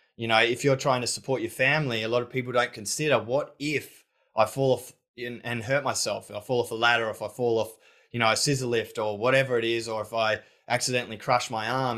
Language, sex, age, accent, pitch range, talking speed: English, male, 20-39, Australian, 110-125 Hz, 240 wpm